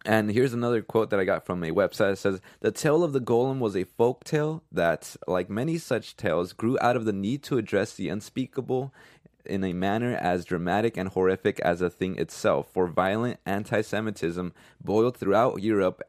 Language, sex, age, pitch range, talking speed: English, male, 20-39, 90-115 Hz, 195 wpm